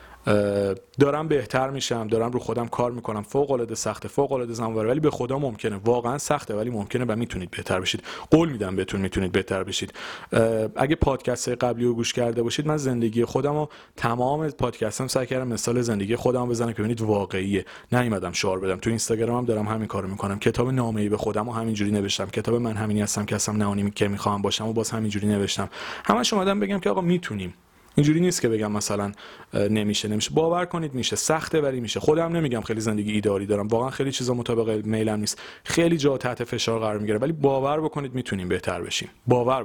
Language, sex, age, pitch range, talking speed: Persian, male, 30-49, 105-135 Hz, 195 wpm